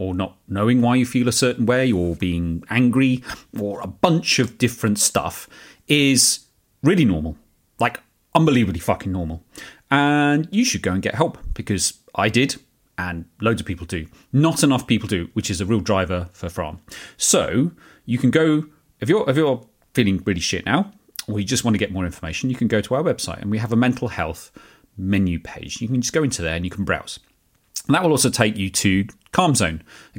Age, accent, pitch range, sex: 30-49, British, 95-130 Hz, male